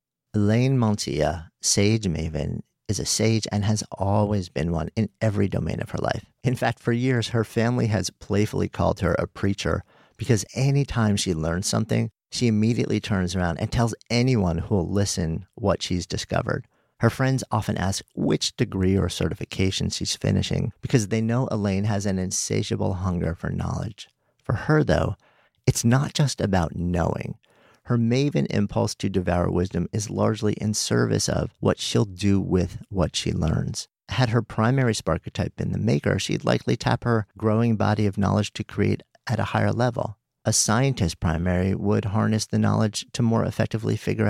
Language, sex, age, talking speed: English, male, 50-69, 170 wpm